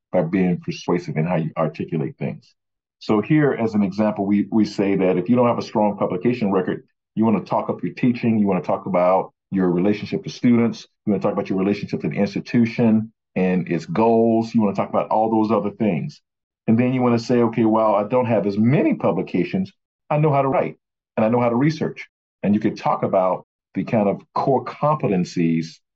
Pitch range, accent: 95-115 Hz, American